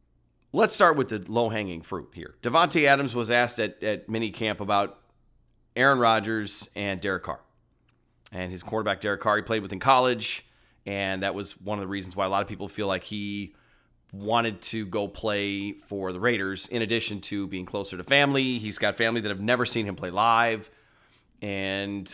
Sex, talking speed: male, 190 wpm